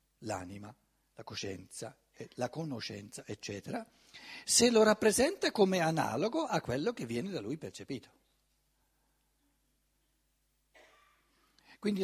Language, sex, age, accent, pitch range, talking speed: Italian, male, 60-79, native, 150-245 Hz, 95 wpm